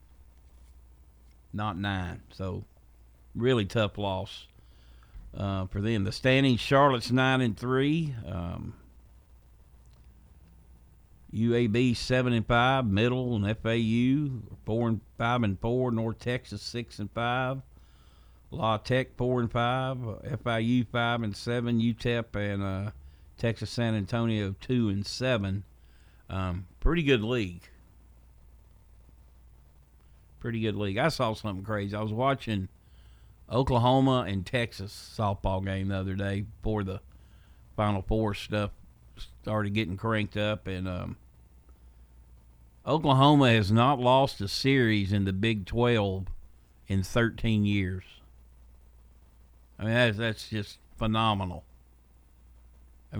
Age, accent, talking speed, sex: 50-69, American, 115 wpm, male